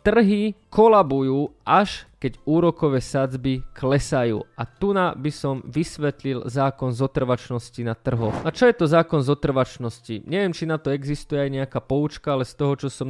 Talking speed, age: 165 wpm, 20-39